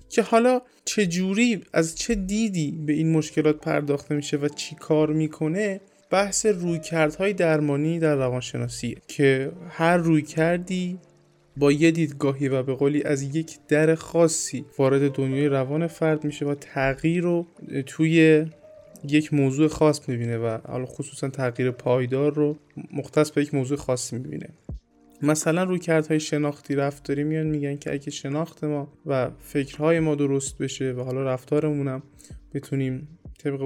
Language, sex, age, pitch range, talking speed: Persian, male, 20-39, 135-160 Hz, 145 wpm